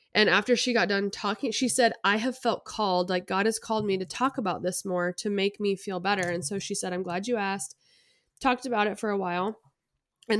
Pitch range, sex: 185-220 Hz, female